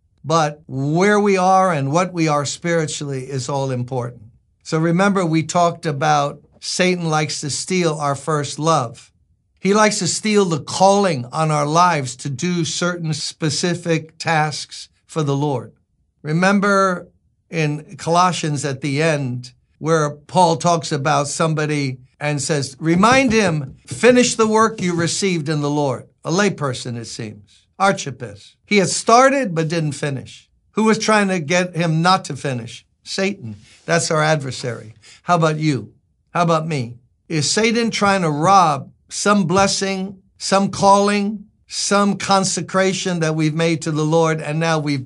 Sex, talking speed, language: male, 150 wpm, English